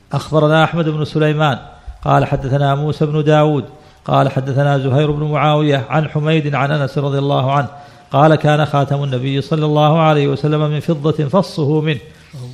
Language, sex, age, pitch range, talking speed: Arabic, male, 50-69, 140-155 Hz, 160 wpm